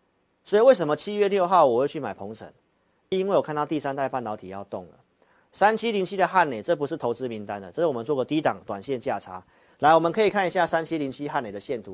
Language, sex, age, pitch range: Chinese, male, 40-59, 105-165 Hz